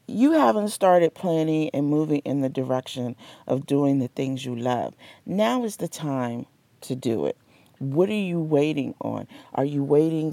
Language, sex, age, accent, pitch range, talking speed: English, female, 40-59, American, 130-160 Hz, 175 wpm